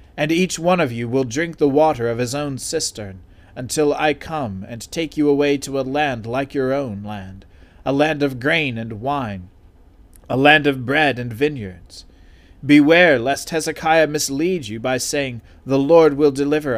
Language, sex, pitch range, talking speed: English, male, 95-145 Hz, 180 wpm